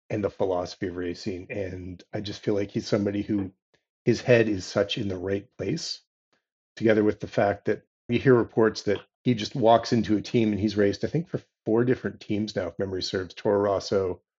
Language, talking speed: English, 215 wpm